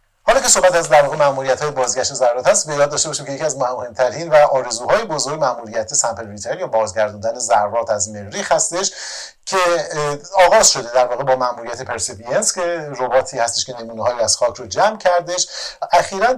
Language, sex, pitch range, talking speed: Persian, male, 130-175 Hz, 170 wpm